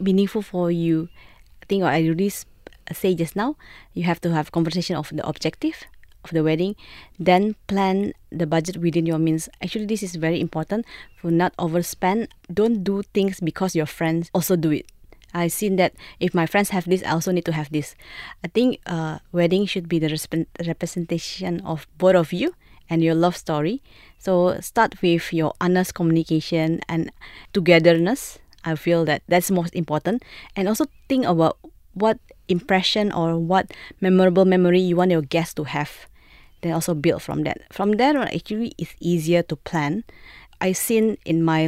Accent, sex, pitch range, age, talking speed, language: Malaysian, female, 165-195 Hz, 20-39, 180 wpm, English